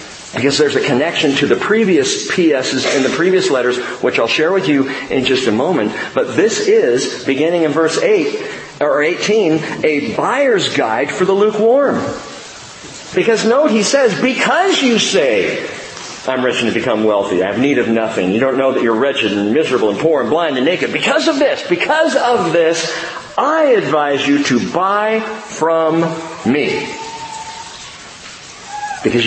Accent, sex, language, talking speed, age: American, male, English, 170 wpm, 40-59